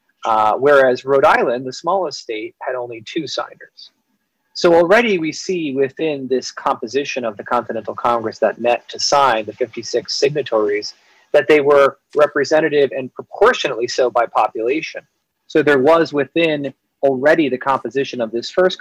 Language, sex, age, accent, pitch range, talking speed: English, male, 30-49, American, 120-165 Hz, 155 wpm